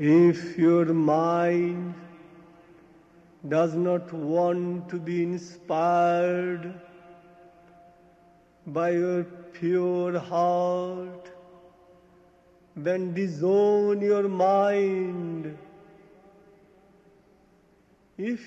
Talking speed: 60 wpm